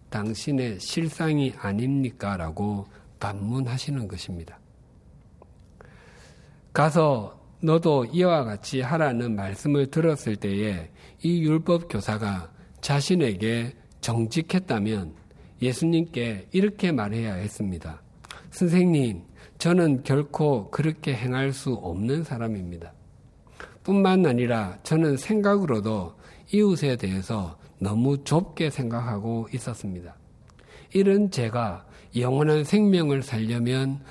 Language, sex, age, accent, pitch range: Korean, male, 50-69, native, 105-155 Hz